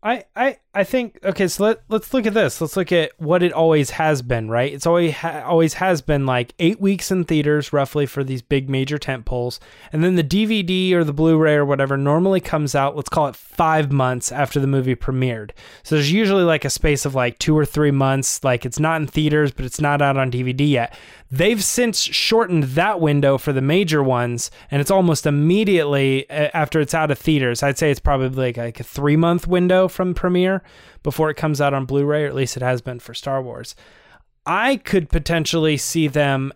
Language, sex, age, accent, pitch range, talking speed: English, male, 20-39, American, 135-170 Hz, 210 wpm